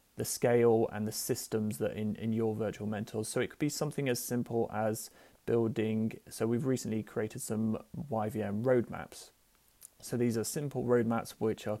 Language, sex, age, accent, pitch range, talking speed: English, male, 30-49, British, 110-120 Hz, 175 wpm